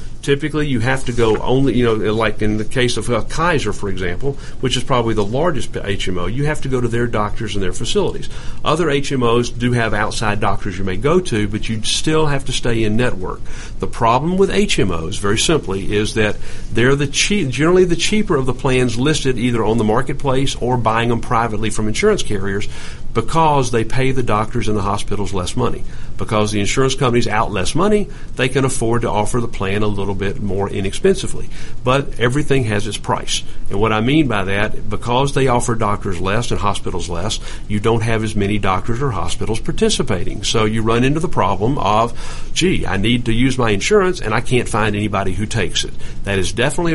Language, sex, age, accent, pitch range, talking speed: English, male, 50-69, American, 105-130 Hz, 205 wpm